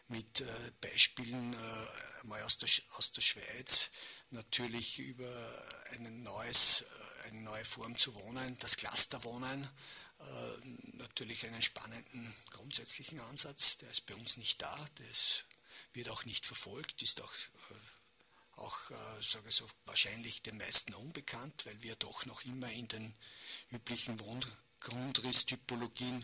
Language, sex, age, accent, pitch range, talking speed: German, male, 50-69, Swiss, 115-125 Hz, 140 wpm